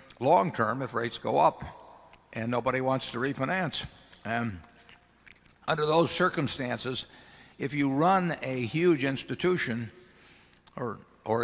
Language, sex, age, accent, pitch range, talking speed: English, male, 60-79, American, 115-140 Hz, 115 wpm